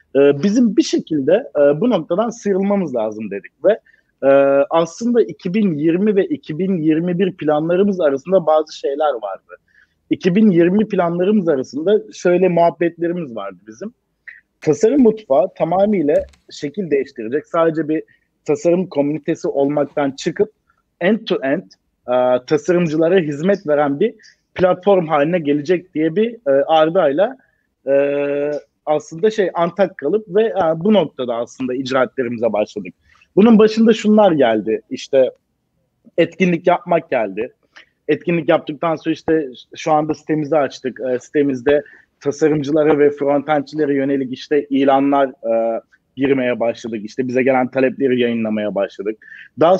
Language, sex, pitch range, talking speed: Turkish, male, 140-190 Hz, 120 wpm